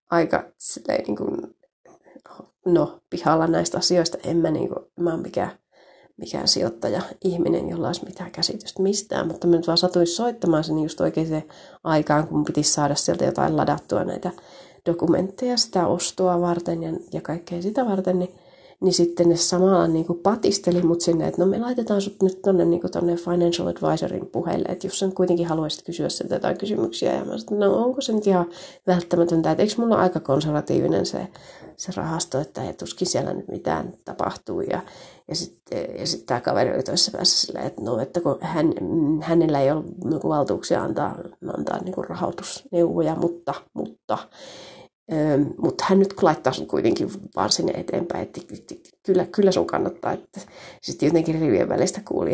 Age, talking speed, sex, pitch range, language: 30-49, 165 wpm, female, 165-190 Hz, Finnish